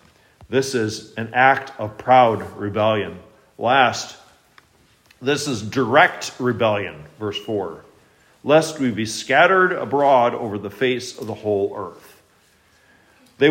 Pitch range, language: 110-155 Hz, English